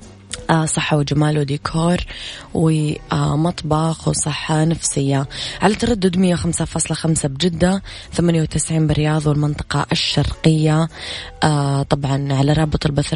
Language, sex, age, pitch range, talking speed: Arabic, female, 20-39, 150-175 Hz, 80 wpm